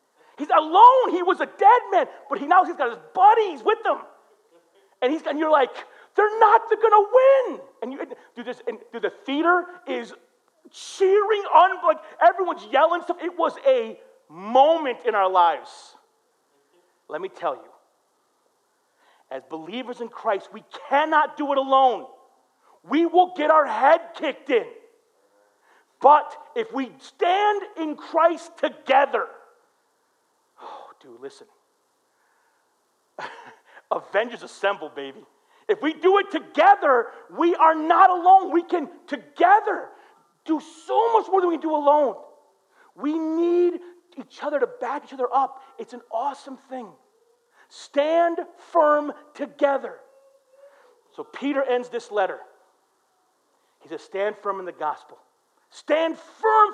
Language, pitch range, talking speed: English, 285-445 Hz, 135 wpm